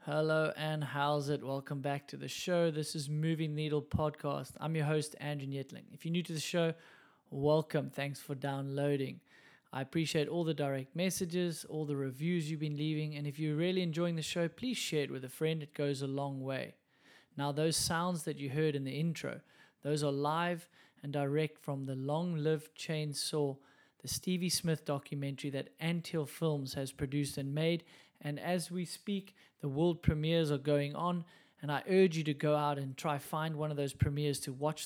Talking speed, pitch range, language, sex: 200 wpm, 140-165 Hz, English, male